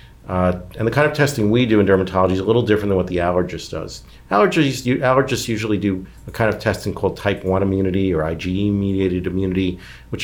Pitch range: 95-120 Hz